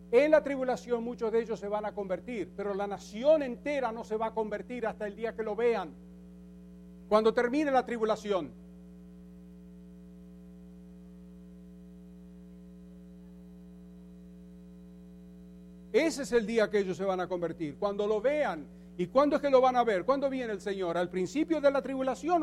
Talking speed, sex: 160 wpm, male